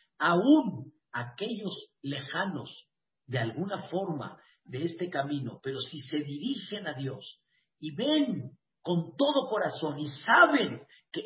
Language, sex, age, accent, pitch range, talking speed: Spanish, male, 50-69, Mexican, 145-220 Hz, 125 wpm